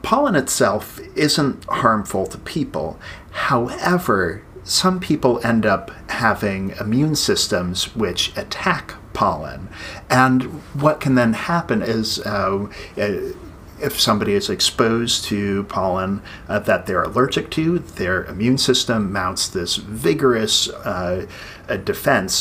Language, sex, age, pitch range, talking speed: English, male, 50-69, 100-130 Hz, 110 wpm